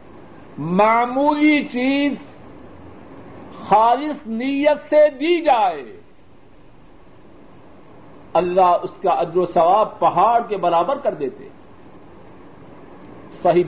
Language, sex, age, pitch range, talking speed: Urdu, male, 50-69, 180-235 Hz, 85 wpm